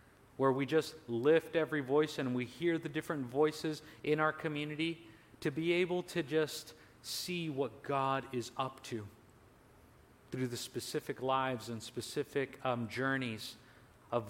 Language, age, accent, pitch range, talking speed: English, 40-59, American, 115-145 Hz, 145 wpm